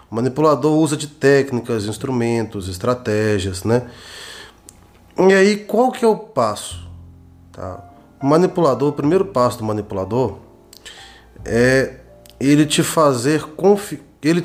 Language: Portuguese